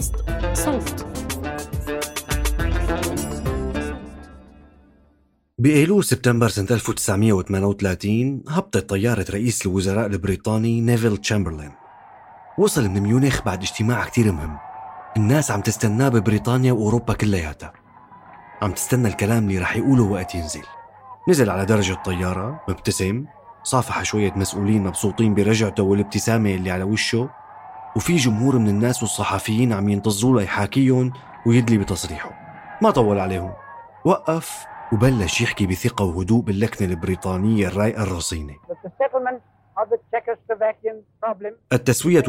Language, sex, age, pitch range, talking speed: Arabic, male, 30-49, 95-125 Hz, 100 wpm